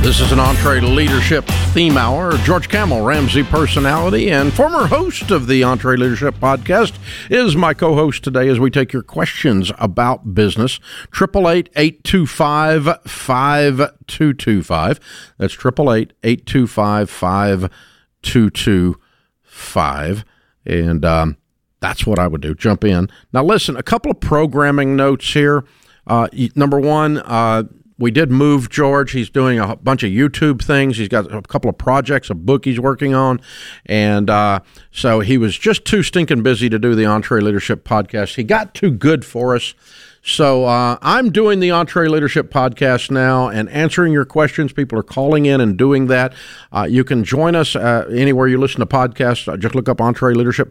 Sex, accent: male, American